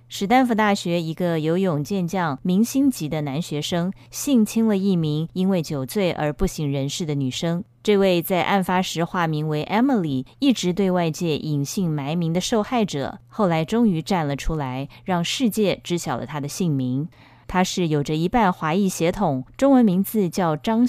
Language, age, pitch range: Chinese, 20-39, 150-195 Hz